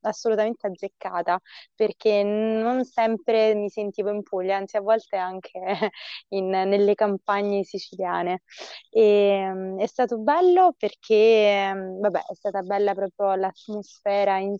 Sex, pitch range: female, 185-210 Hz